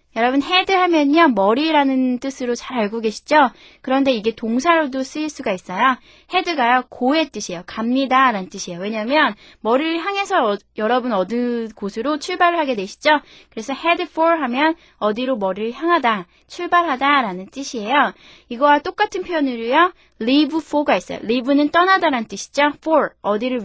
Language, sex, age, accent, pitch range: Korean, female, 20-39, native, 225-310 Hz